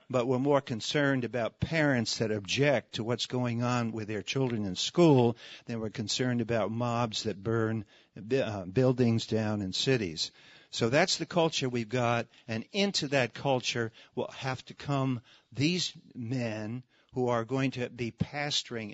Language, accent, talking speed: English, American, 160 wpm